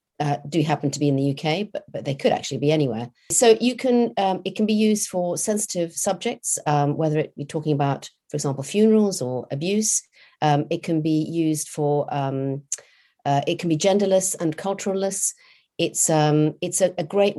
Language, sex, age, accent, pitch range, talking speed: English, female, 40-59, British, 150-185 Hz, 195 wpm